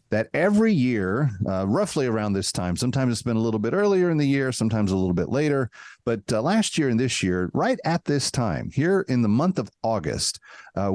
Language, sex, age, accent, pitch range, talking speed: English, male, 40-59, American, 95-130 Hz, 225 wpm